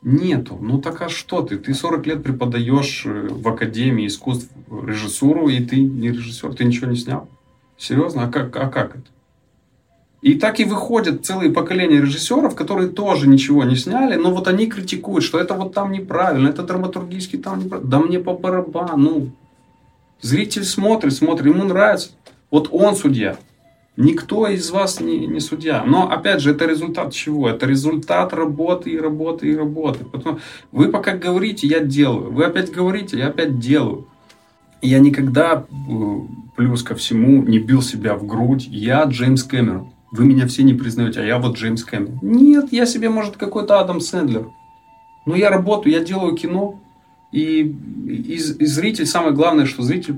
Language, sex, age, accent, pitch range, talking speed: Russian, male, 20-39, native, 130-185 Hz, 165 wpm